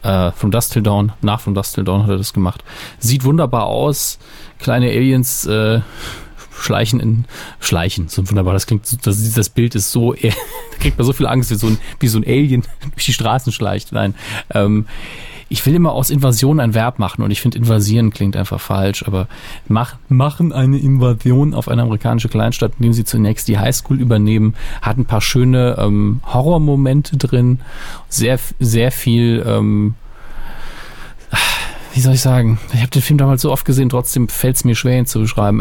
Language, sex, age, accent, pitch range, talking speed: German, male, 30-49, German, 105-130 Hz, 190 wpm